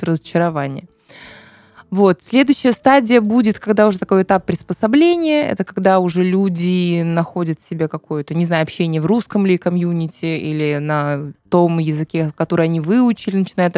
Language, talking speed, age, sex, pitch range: Russian, 135 wpm, 20-39, female, 165-205 Hz